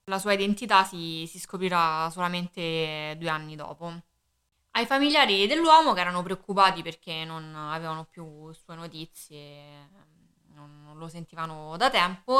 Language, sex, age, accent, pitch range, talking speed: Italian, female, 20-39, native, 160-195 Hz, 130 wpm